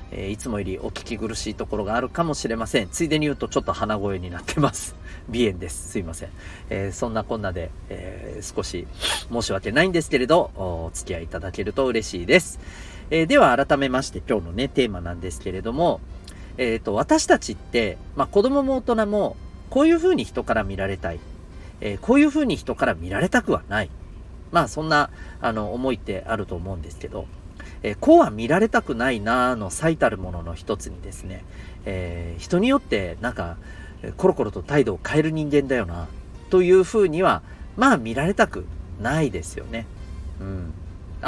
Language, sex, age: Japanese, male, 40-59